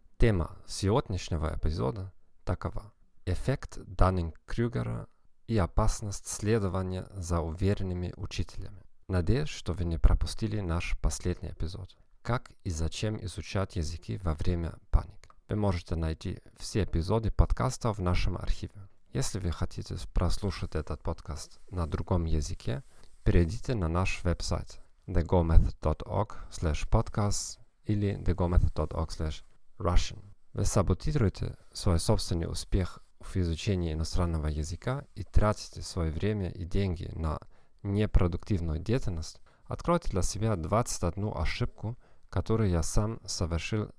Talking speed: 110 wpm